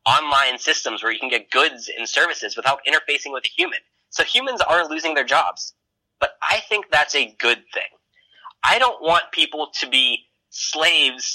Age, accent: 20-39, American